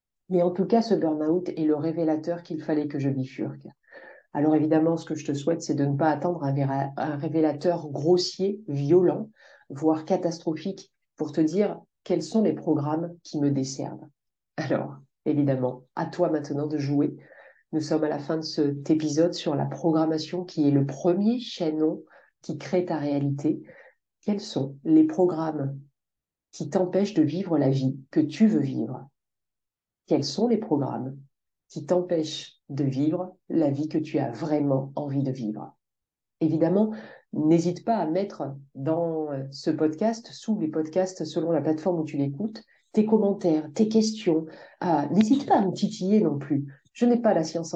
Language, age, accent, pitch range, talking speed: French, 40-59, French, 150-180 Hz, 170 wpm